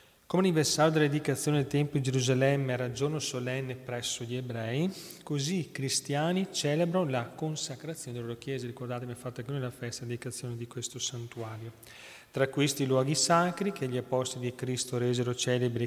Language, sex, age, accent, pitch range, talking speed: Italian, male, 30-49, native, 120-140 Hz, 165 wpm